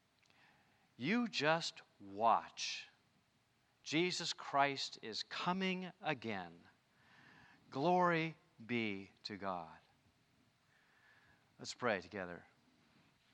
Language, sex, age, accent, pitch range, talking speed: English, male, 50-69, American, 115-165 Hz, 70 wpm